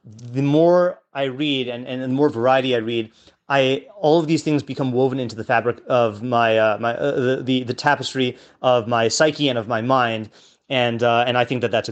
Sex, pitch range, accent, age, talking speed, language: male, 120-145 Hz, American, 30-49, 215 wpm, English